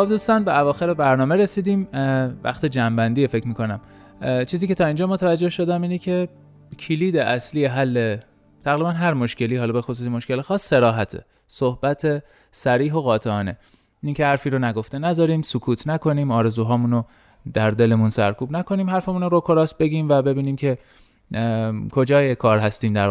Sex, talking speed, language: male, 155 wpm, Persian